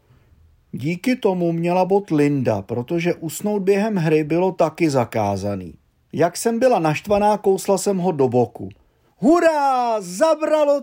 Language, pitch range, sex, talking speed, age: Czech, 160-210 Hz, male, 125 wpm, 40-59